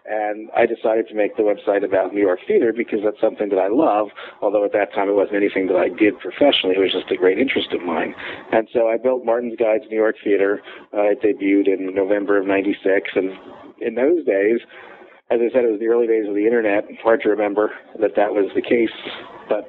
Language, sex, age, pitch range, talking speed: English, male, 50-69, 105-120 Hz, 240 wpm